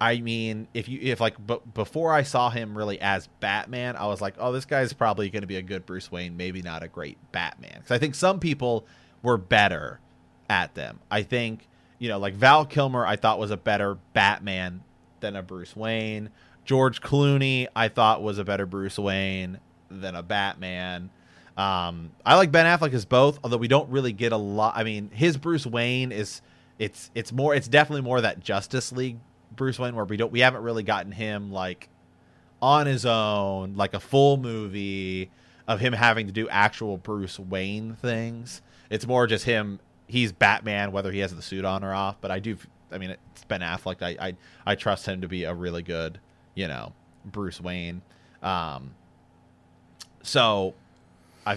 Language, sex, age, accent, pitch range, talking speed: English, male, 30-49, American, 95-120 Hz, 195 wpm